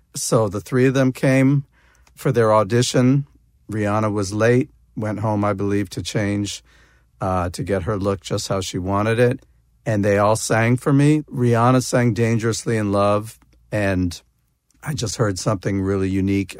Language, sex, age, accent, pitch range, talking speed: English, male, 50-69, American, 95-115 Hz, 165 wpm